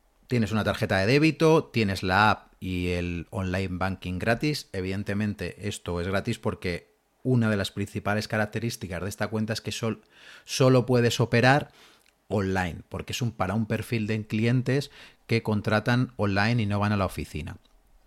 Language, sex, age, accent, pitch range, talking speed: Spanish, male, 30-49, Spanish, 100-140 Hz, 160 wpm